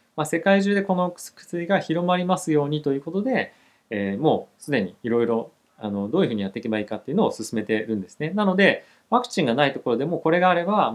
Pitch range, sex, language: 110-175 Hz, male, Japanese